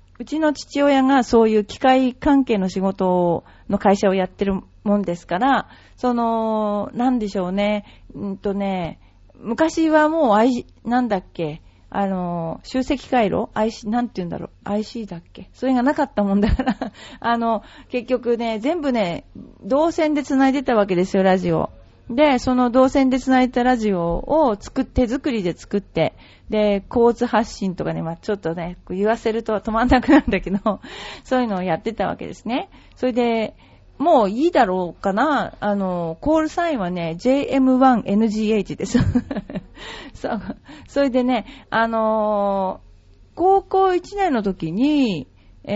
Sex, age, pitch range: female, 40-59, 195-260 Hz